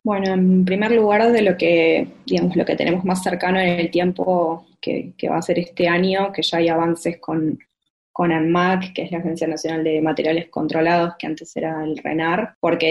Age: 20-39